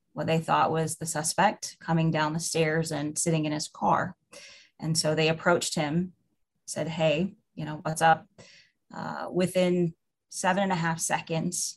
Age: 30-49